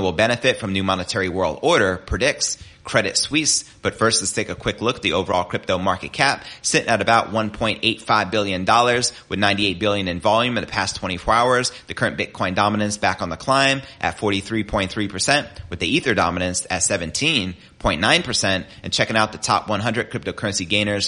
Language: English